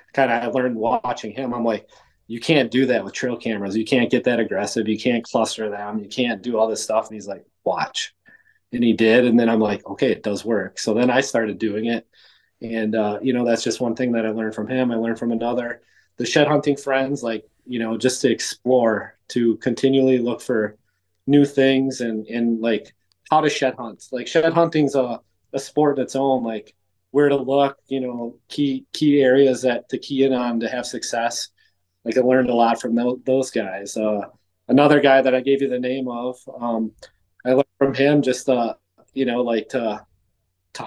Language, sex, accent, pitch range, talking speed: English, male, American, 110-130 Hz, 215 wpm